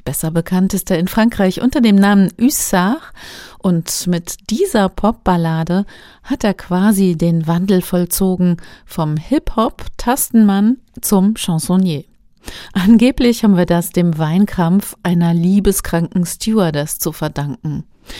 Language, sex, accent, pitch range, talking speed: German, female, German, 165-210 Hz, 115 wpm